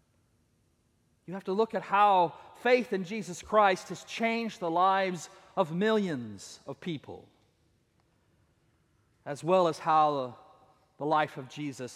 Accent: American